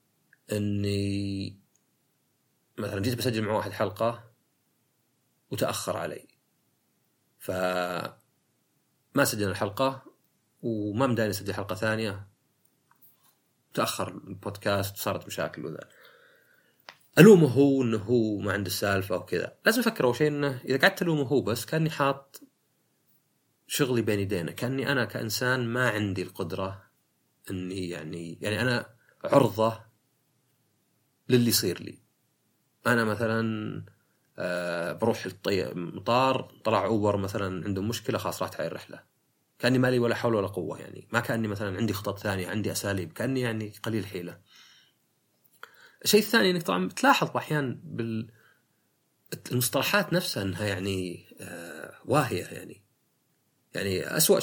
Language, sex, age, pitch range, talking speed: Arabic, male, 30-49, 100-130 Hz, 115 wpm